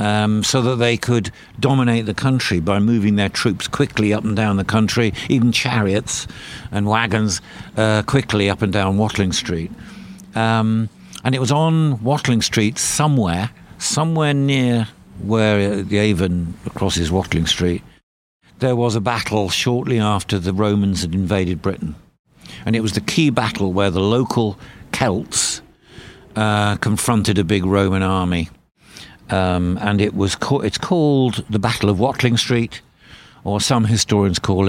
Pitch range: 95-115 Hz